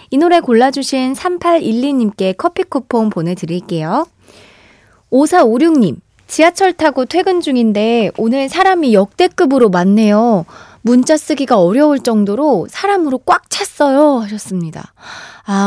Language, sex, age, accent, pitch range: Korean, female, 20-39, native, 195-310 Hz